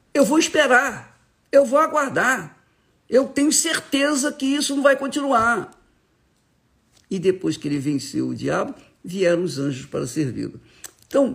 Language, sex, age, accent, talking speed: Portuguese, male, 50-69, Brazilian, 145 wpm